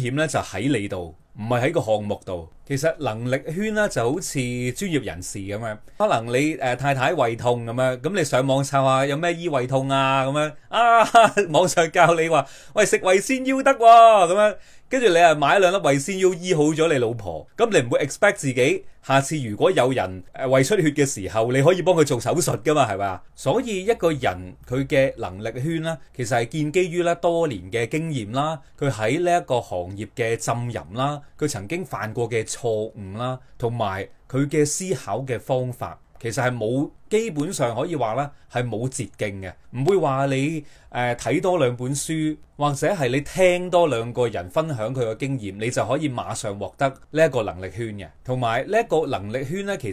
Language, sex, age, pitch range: Chinese, male, 30-49, 115-165 Hz